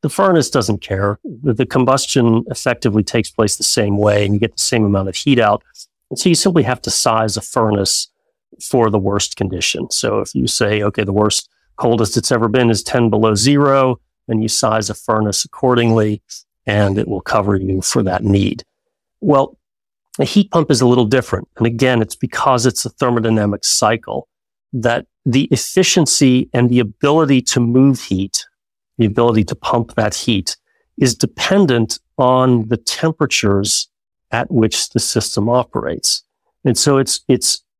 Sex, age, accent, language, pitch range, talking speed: male, 40-59, American, English, 110-135 Hz, 170 wpm